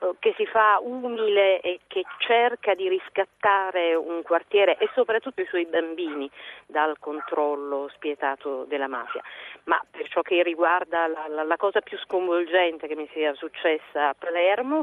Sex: female